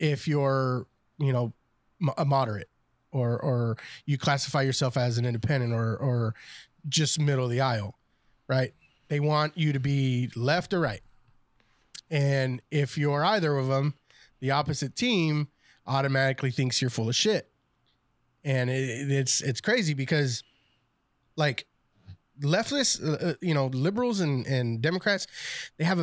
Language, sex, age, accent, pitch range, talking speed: English, male, 20-39, American, 125-150 Hz, 145 wpm